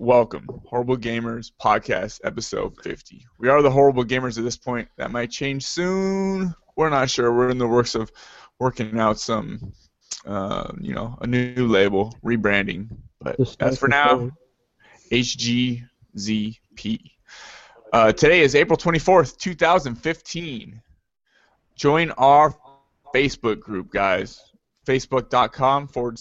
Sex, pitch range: male, 120-145 Hz